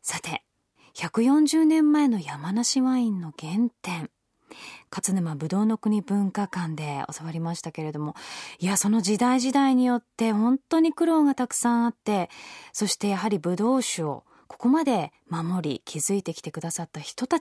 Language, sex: Japanese, female